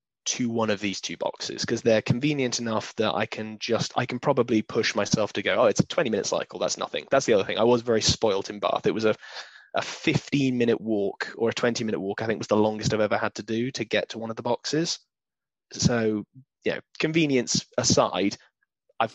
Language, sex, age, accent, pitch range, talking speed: English, male, 20-39, British, 110-130 Hz, 230 wpm